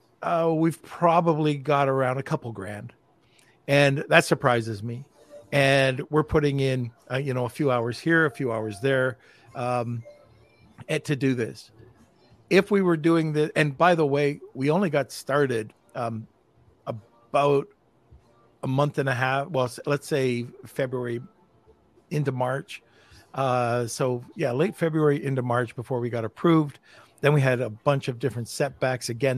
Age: 50-69